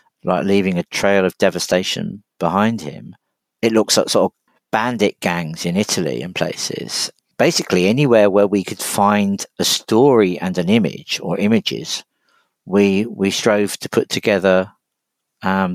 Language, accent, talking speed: English, British, 150 wpm